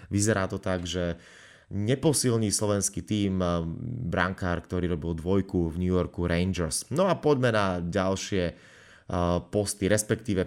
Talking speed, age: 125 wpm, 30-49